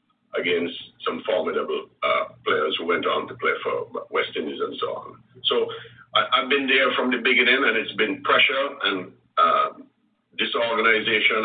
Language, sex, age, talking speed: English, male, 50-69, 160 wpm